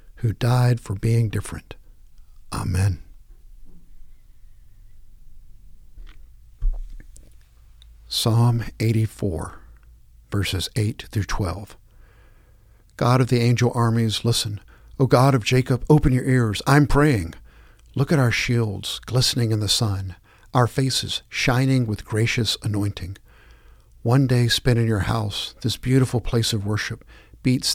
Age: 60-79